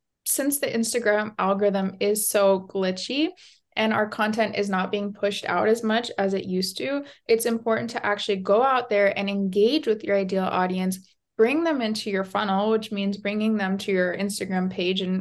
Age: 20-39